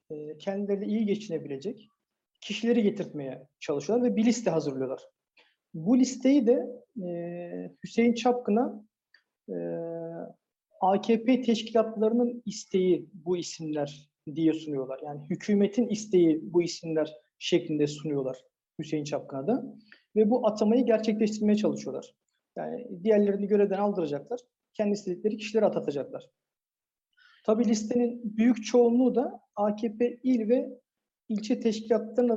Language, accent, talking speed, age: Turkish, native, 100 wpm, 50-69